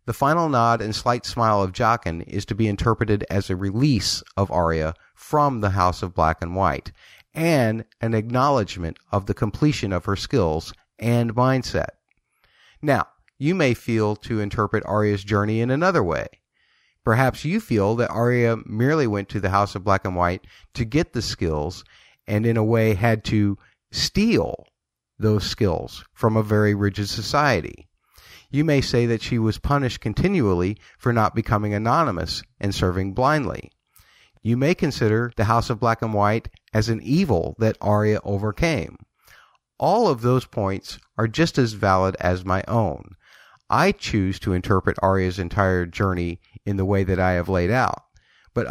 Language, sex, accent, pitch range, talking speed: English, male, American, 95-120 Hz, 165 wpm